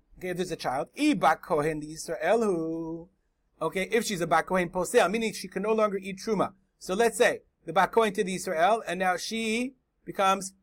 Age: 40-59